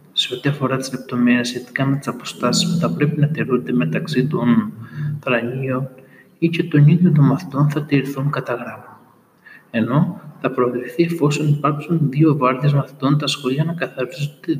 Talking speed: 160 wpm